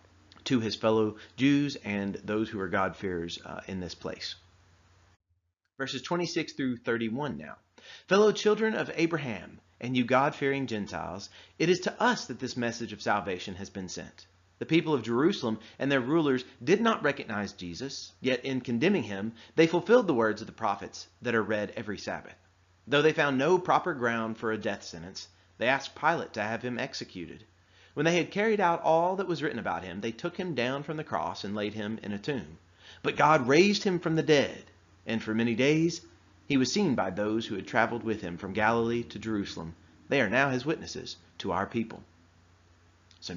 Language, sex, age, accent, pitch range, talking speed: English, male, 30-49, American, 95-150 Hz, 190 wpm